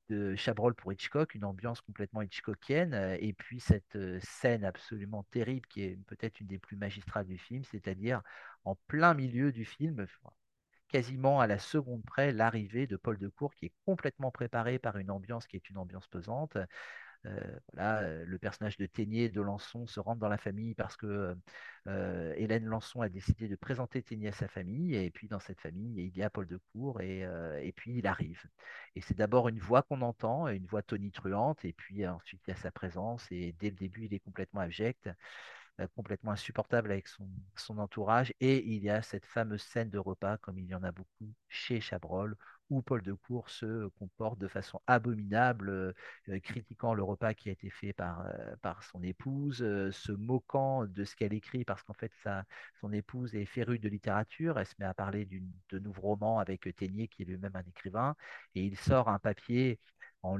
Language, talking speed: French, 200 wpm